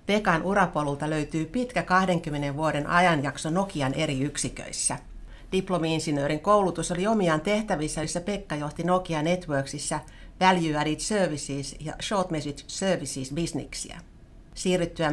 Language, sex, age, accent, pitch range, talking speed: Finnish, female, 60-79, native, 150-185 Hz, 115 wpm